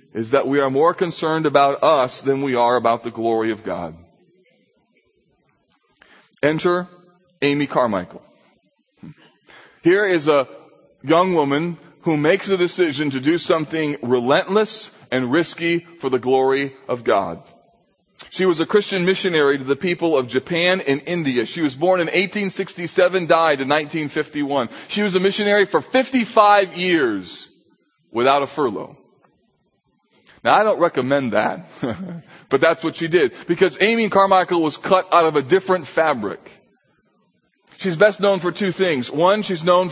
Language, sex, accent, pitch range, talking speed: English, male, American, 150-190 Hz, 145 wpm